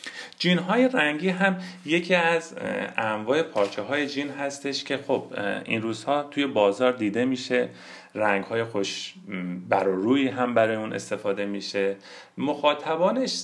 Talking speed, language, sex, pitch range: 130 wpm, Persian, male, 100-145 Hz